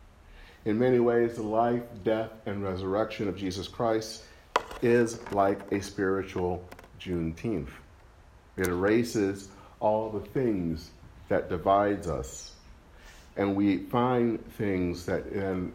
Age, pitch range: 40-59, 80-110 Hz